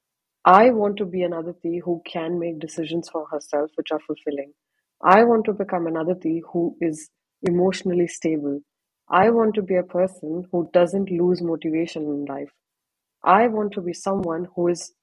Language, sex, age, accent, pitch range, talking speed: English, female, 30-49, Indian, 160-205 Hz, 175 wpm